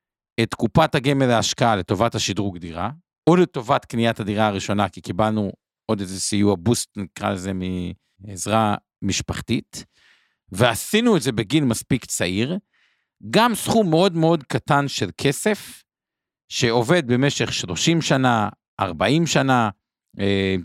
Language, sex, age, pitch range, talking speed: Hebrew, male, 50-69, 105-140 Hz, 120 wpm